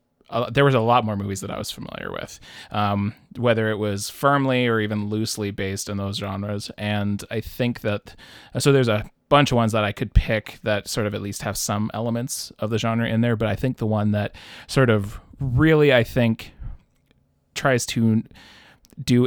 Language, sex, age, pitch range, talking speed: English, male, 20-39, 105-120 Hz, 200 wpm